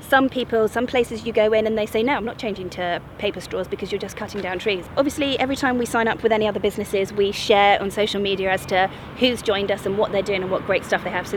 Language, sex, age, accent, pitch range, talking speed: English, female, 20-39, British, 195-235 Hz, 285 wpm